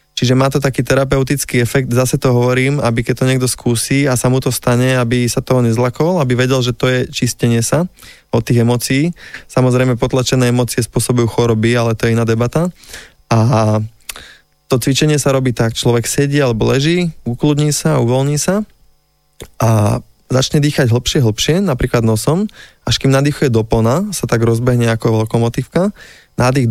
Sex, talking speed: male, 165 wpm